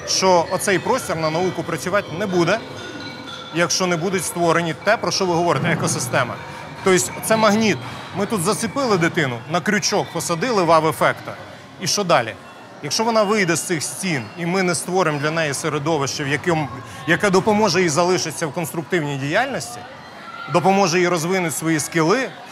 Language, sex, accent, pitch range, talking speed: Russian, male, native, 150-185 Hz, 160 wpm